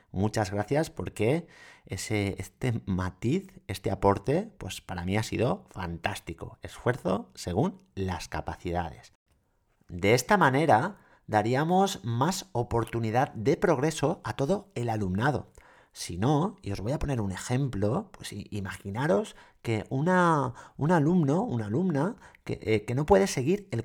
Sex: male